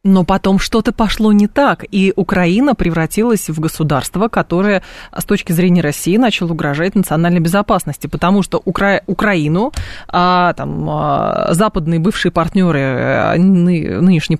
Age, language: 20-39, Russian